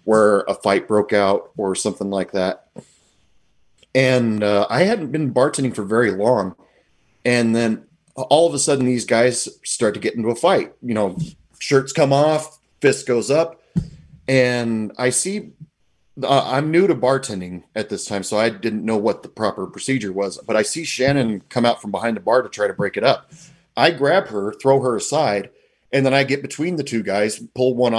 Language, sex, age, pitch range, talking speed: English, male, 30-49, 105-150 Hz, 195 wpm